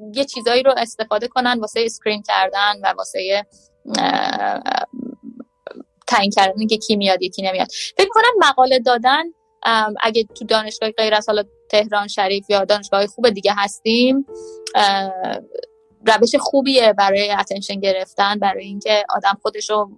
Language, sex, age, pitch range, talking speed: Persian, female, 20-39, 210-255 Hz, 125 wpm